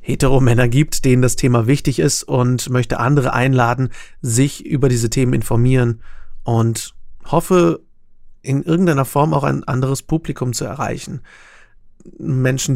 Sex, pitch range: male, 115-135 Hz